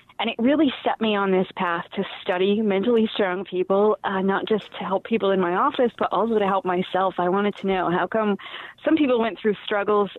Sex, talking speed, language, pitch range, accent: female, 225 wpm, English, 185-220 Hz, American